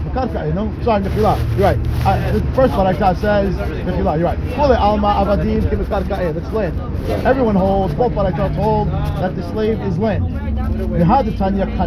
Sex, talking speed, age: male, 125 wpm, 30-49